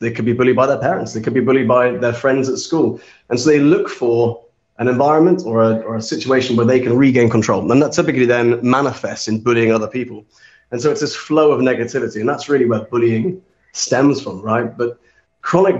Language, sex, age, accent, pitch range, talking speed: English, male, 30-49, British, 115-135 Hz, 225 wpm